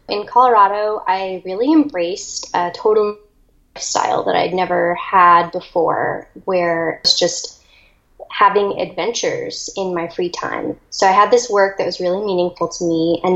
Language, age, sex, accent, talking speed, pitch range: English, 10-29, female, American, 155 wpm, 175-220 Hz